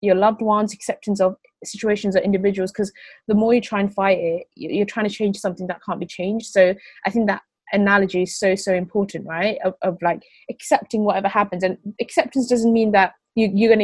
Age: 20-39